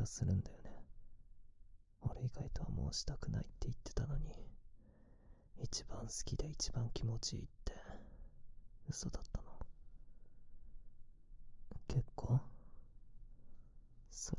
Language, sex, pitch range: Japanese, male, 100-120 Hz